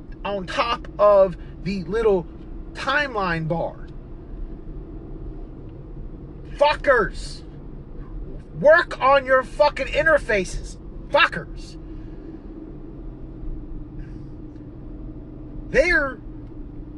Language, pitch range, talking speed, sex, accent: English, 175-280 Hz, 55 wpm, male, American